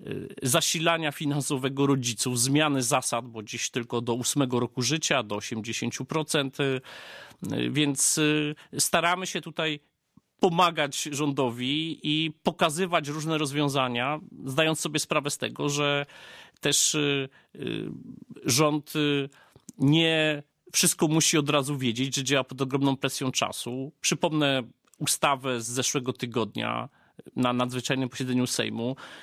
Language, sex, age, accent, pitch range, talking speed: Polish, male, 30-49, native, 130-155 Hz, 110 wpm